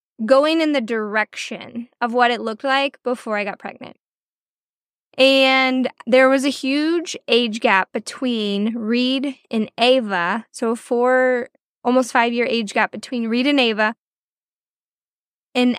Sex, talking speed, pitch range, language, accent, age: female, 135 wpm, 220-265 Hz, English, American, 10-29